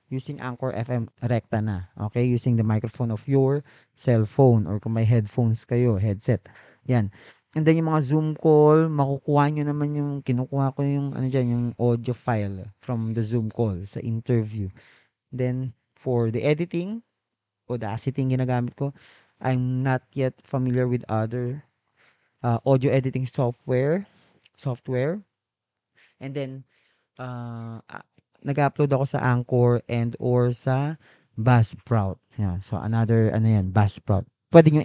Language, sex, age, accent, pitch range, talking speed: Filipino, male, 20-39, native, 115-140 Hz, 140 wpm